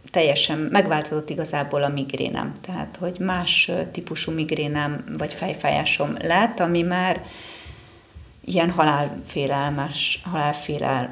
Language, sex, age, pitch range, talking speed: Hungarian, female, 30-49, 145-165 Hz, 95 wpm